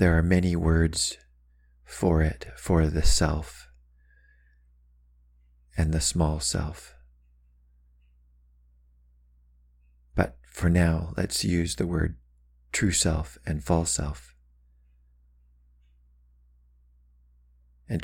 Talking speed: 85 wpm